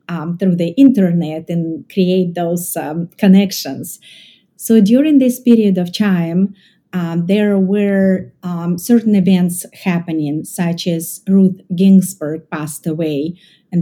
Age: 30-49